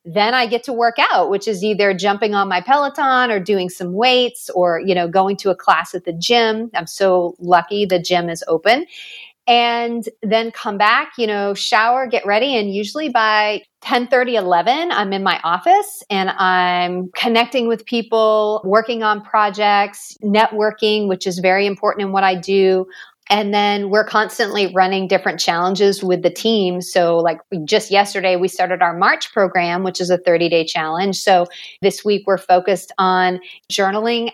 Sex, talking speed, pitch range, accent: female, 175 wpm, 185-225 Hz, American